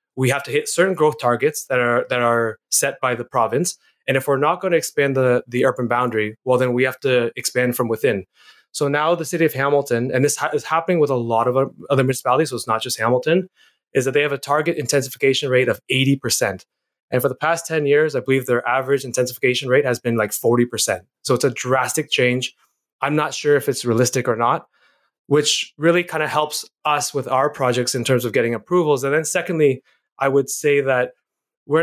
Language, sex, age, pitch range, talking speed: English, male, 20-39, 130-155 Hz, 225 wpm